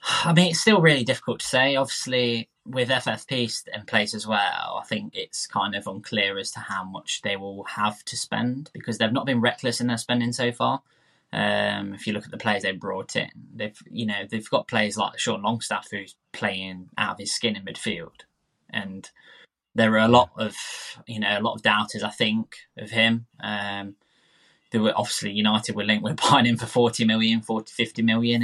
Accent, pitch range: British, 110-125 Hz